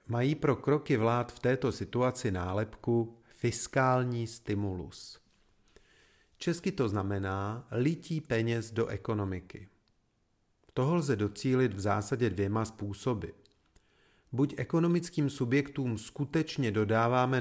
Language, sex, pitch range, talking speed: Czech, male, 100-135 Hz, 100 wpm